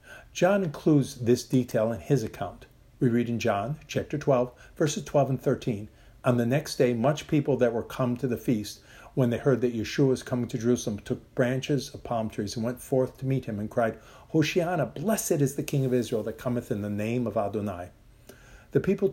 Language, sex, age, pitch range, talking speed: English, male, 50-69, 115-155 Hz, 210 wpm